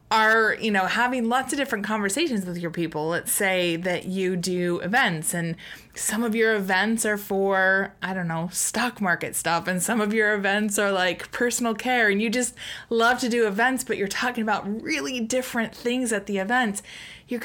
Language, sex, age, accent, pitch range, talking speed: English, female, 20-39, American, 180-240 Hz, 195 wpm